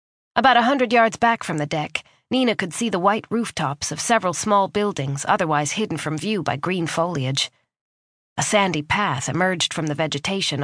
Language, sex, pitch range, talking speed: English, female, 145-205 Hz, 180 wpm